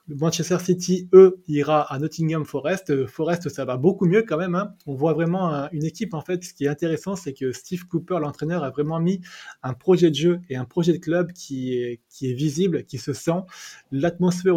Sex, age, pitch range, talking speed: male, 20-39, 135-165 Hz, 210 wpm